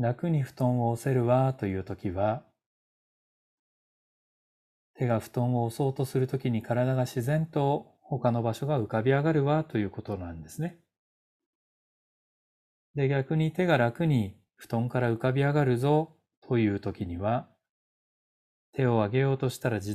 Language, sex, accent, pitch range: Japanese, male, native, 105-140 Hz